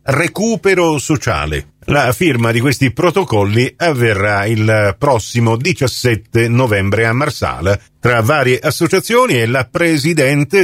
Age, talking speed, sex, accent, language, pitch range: 40-59, 115 wpm, male, native, Italian, 115-170 Hz